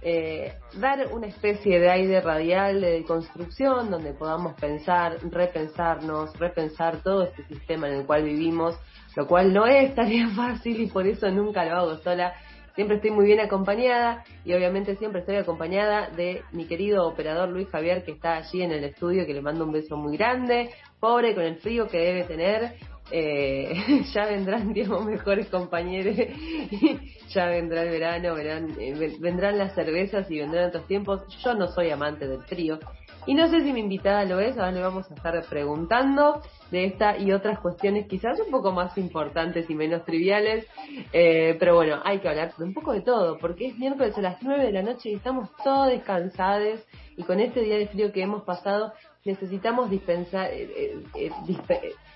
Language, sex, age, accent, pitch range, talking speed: Spanish, female, 20-39, Argentinian, 170-215 Hz, 185 wpm